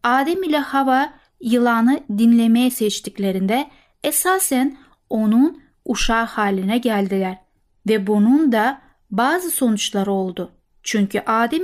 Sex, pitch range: female, 210-265 Hz